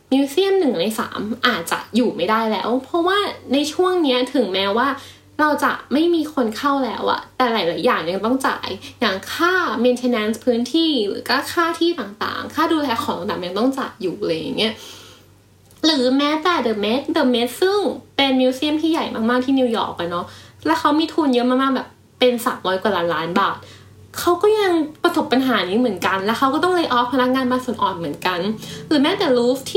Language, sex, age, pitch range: Thai, female, 10-29, 235-305 Hz